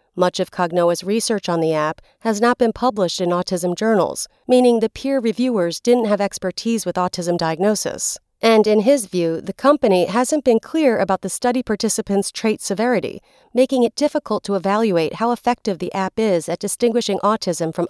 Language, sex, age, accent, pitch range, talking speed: English, female, 40-59, American, 180-240 Hz, 180 wpm